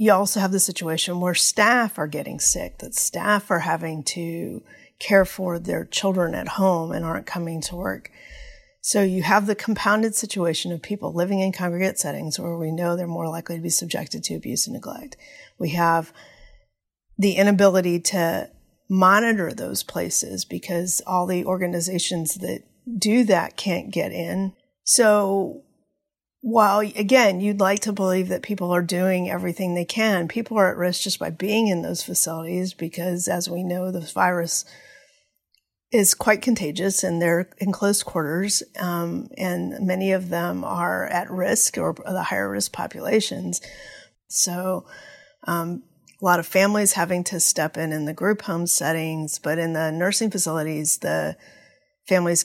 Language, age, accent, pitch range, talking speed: English, 40-59, American, 170-205 Hz, 160 wpm